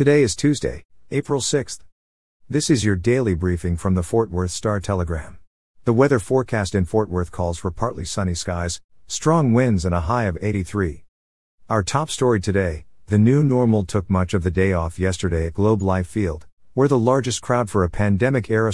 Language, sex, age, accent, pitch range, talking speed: English, male, 50-69, American, 90-120 Hz, 185 wpm